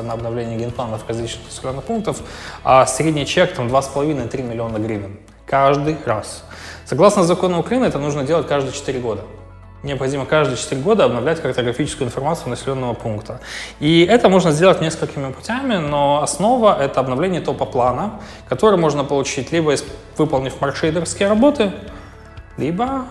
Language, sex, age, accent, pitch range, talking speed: Russian, male, 20-39, native, 120-155 Hz, 140 wpm